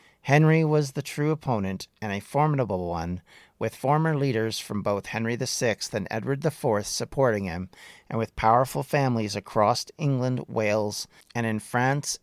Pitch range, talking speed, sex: 105-140 Hz, 150 wpm, male